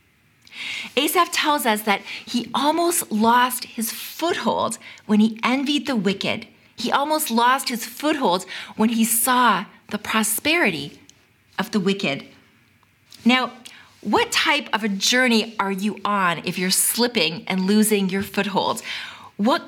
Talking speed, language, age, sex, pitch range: 135 wpm, English, 40-59, female, 205-260 Hz